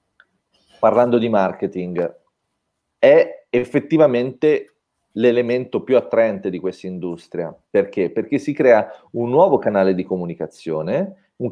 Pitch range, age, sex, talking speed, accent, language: 95-155 Hz, 30-49, male, 110 wpm, native, Italian